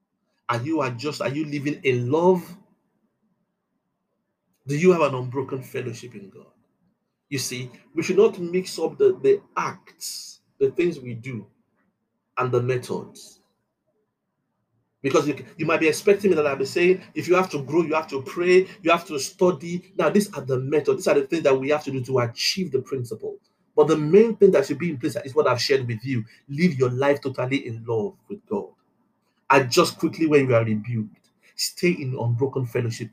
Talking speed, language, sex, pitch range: 195 wpm, English, male, 130-190 Hz